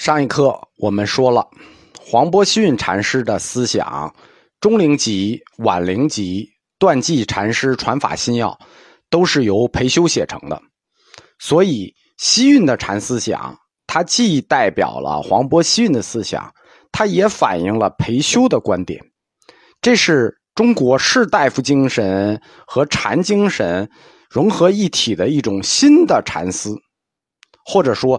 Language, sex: Chinese, male